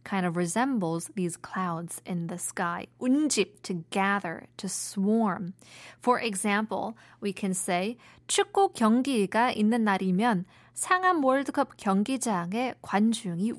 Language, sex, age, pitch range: Korean, female, 20-39, 185-230 Hz